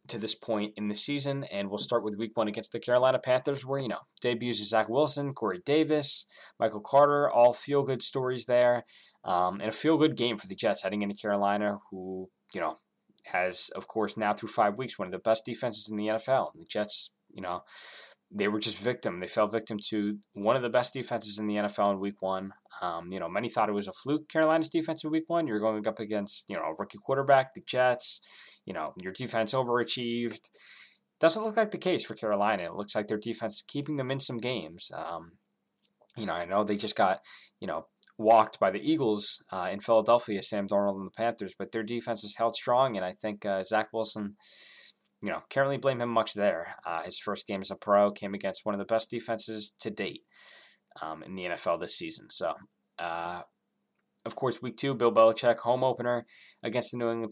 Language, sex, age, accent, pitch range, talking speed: English, male, 20-39, American, 105-125 Hz, 220 wpm